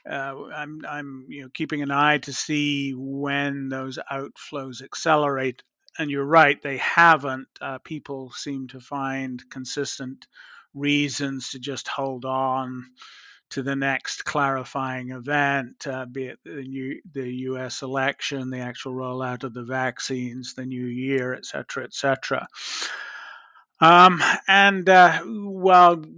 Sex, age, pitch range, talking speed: male, 50-69, 130-150 Hz, 125 wpm